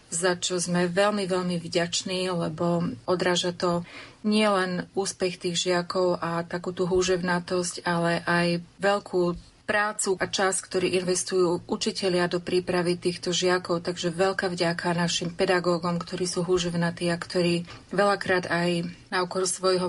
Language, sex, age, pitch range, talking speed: Slovak, female, 30-49, 175-190 Hz, 135 wpm